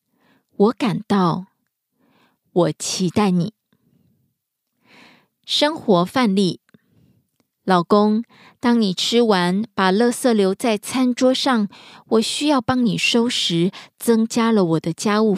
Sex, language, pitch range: female, Korean, 185-235 Hz